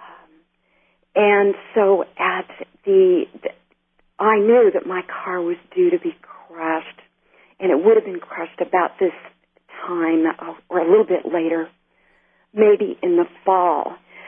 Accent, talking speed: American, 145 wpm